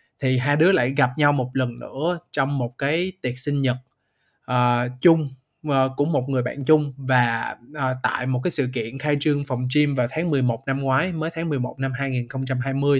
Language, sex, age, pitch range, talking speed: Vietnamese, male, 20-39, 130-150 Hz, 190 wpm